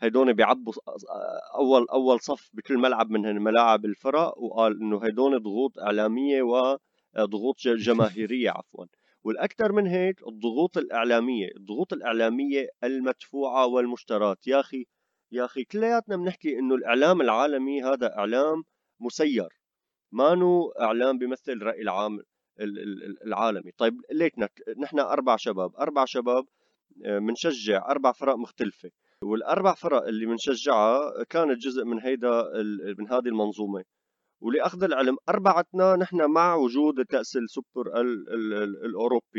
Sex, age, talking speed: male, 30-49, 115 wpm